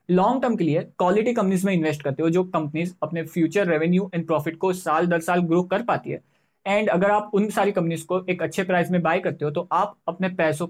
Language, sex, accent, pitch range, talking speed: Hindi, male, native, 160-195 Hz, 240 wpm